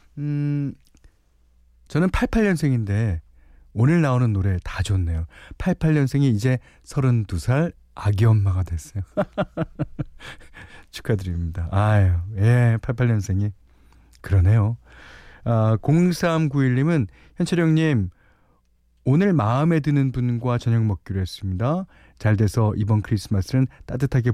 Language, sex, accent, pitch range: Korean, male, native, 90-145 Hz